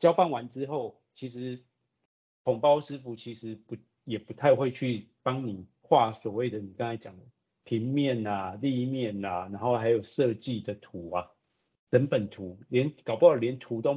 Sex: male